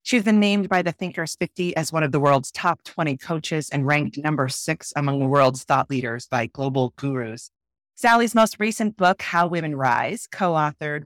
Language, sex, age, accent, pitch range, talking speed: English, female, 30-49, American, 130-170 Hz, 190 wpm